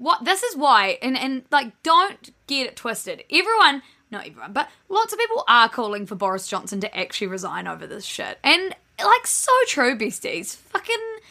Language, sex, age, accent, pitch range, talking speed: English, female, 10-29, Australian, 205-295 Hz, 180 wpm